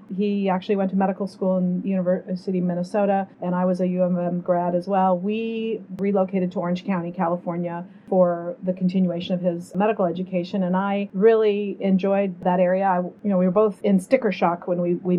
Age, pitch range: 40-59, 180-205 Hz